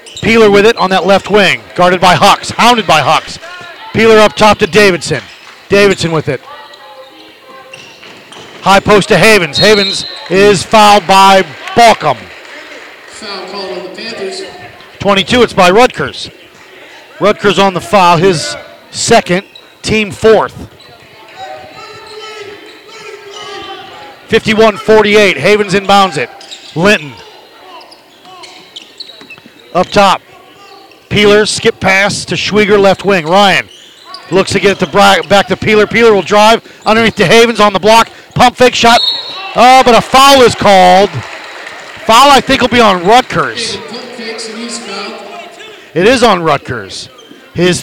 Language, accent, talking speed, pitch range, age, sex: English, American, 120 wpm, 190-235 Hz, 40-59, male